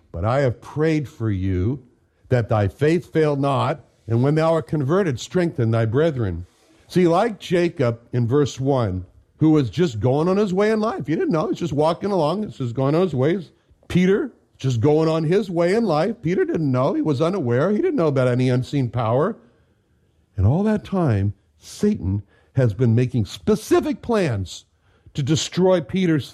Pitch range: 115-180 Hz